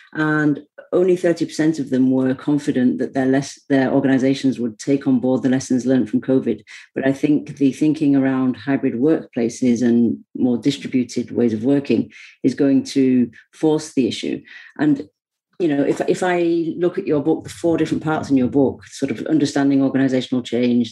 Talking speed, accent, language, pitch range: 180 wpm, British, English, 130-150 Hz